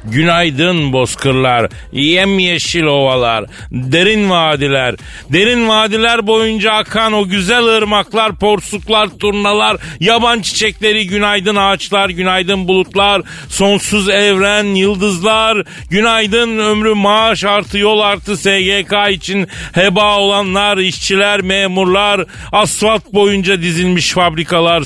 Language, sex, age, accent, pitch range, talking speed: Turkish, male, 40-59, native, 165-205 Hz, 95 wpm